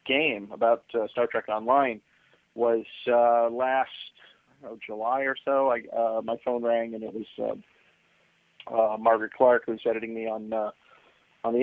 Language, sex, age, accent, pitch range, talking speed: English, male, 40-59, American, 115-130 Hz, 165 wpm